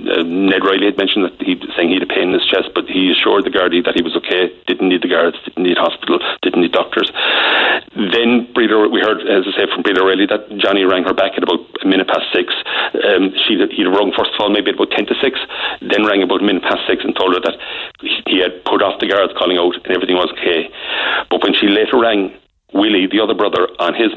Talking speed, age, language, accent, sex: 255 wpm, 40-59, English, Irish, male